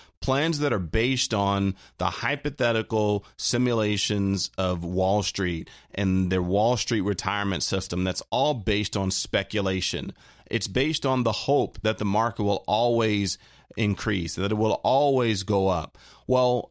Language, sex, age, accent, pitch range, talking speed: English, male, 30-49, American, 100-130 Hz, 145 wpm